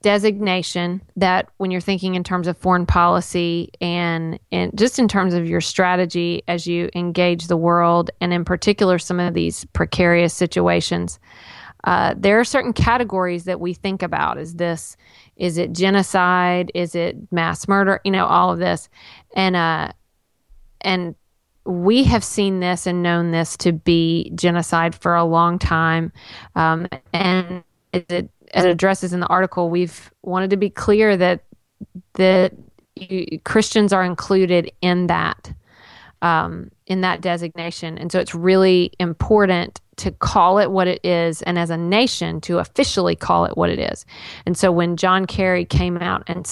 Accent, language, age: American, English, 40-59